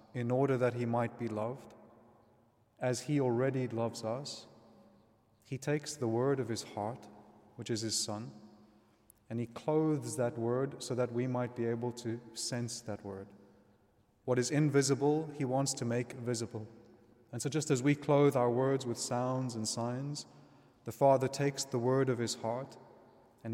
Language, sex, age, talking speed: English, male, 30-49, 170 wpm